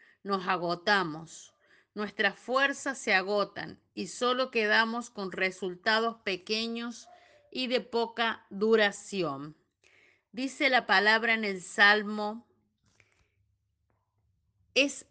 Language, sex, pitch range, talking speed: Spanish, female, 190-235 Hz, 90 wpm